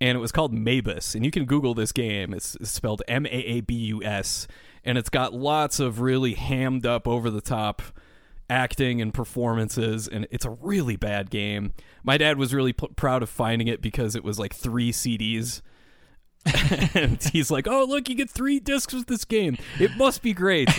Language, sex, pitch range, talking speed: English, male, 110-135 Hz, 175 wpm